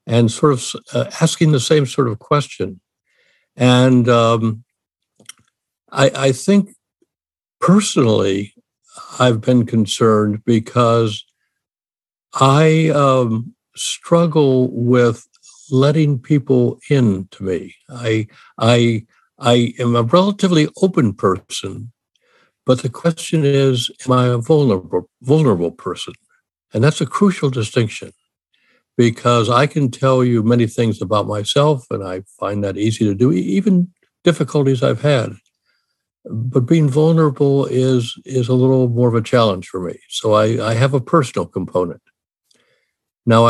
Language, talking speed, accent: English, 125 wpm, American